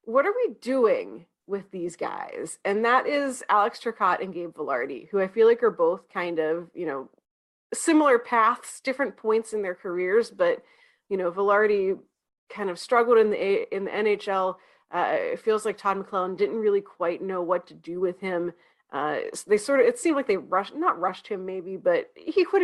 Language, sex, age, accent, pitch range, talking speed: English, female, 30-49, American, 185-230 Hz, 205 wpm